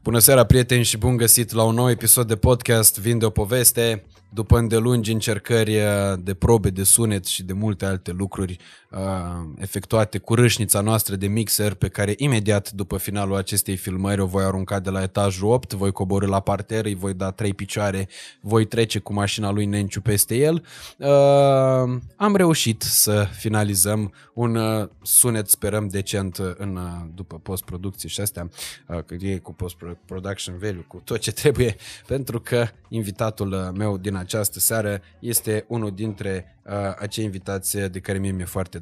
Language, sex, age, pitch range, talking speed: Romanian, male, 20-39, 100-115 Hz, 165 wpm